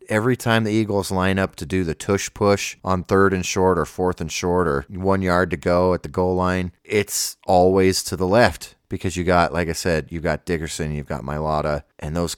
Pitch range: 85-100 Hz